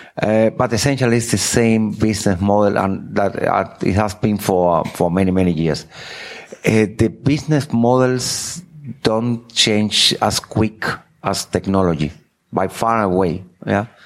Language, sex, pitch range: English, male, 100-115 Hz